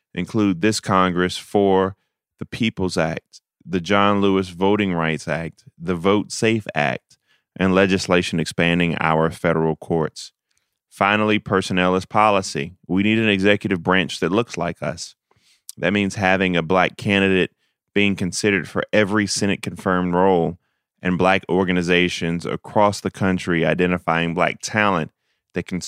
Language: English